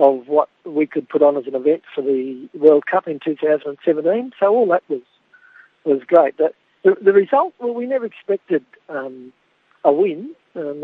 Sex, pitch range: male, 145-175 Hz